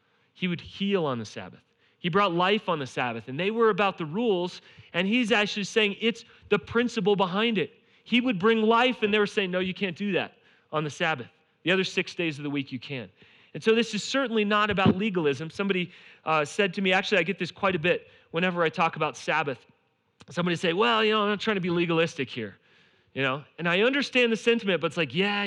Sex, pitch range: male, 145-210 Hz